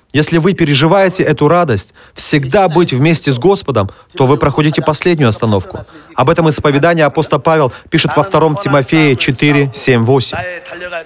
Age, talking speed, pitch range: 30-49, 140 wpm, 135-180 Hz